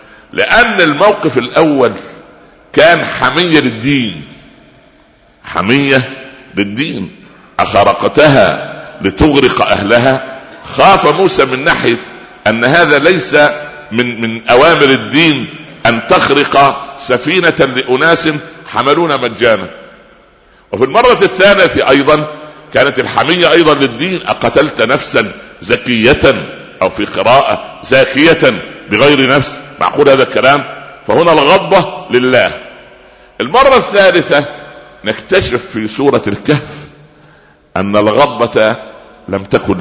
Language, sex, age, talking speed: Arabic, male, 60-79, 90 wpm